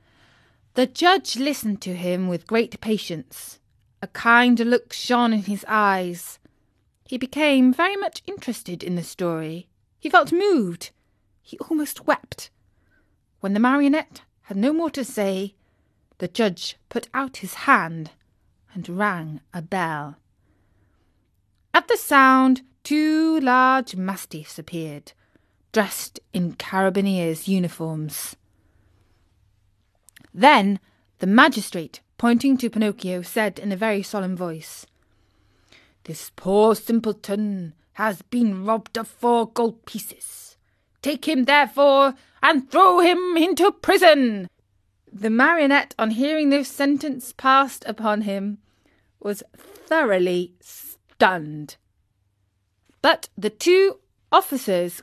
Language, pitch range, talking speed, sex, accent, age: English, 170-265 Hz, 115 wpm, female, British, 30-49